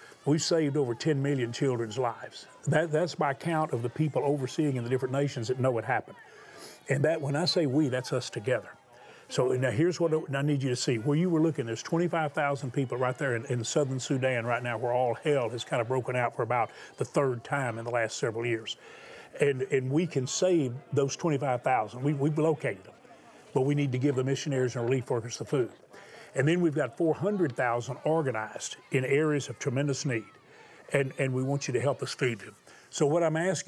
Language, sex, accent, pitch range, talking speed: English, male, American, 125-155 Hz, 215 wpm